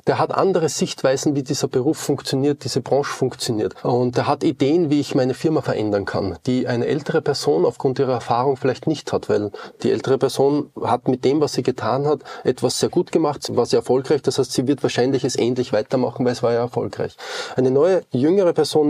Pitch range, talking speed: 125-155 Hz, 210 wpm